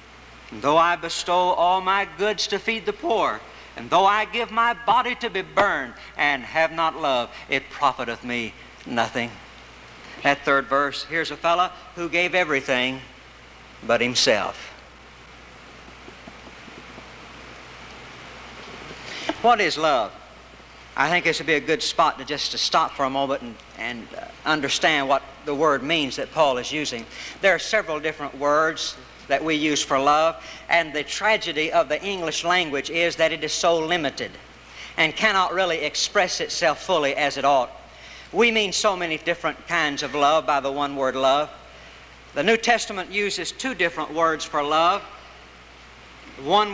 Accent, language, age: American, English, 60-79